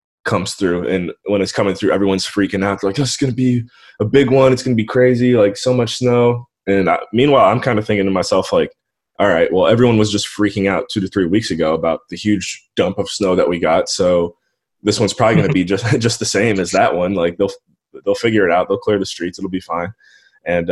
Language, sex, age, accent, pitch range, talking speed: English, male, 20-39, American, 95-115 Hz, 245 wpm